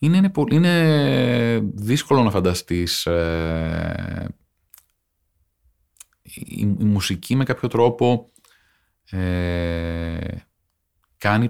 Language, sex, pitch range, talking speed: Greek, male, 80-100 Hz, 65 wpm